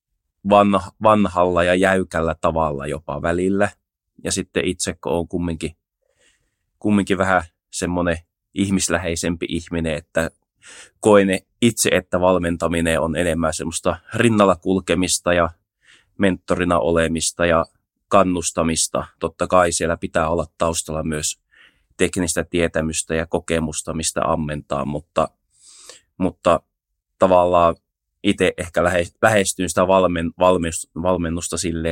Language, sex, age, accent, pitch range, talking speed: Finnish, male, 20-39, native, 80-95 Hz, 105 wpm